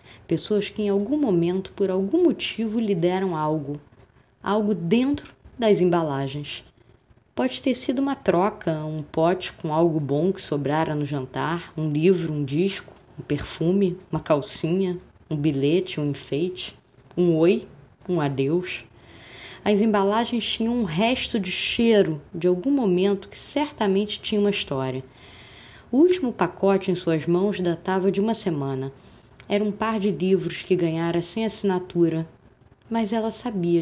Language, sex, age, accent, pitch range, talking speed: Portuguese, female, 20-39, Brazilian, 155-220 Hz, 145 wpm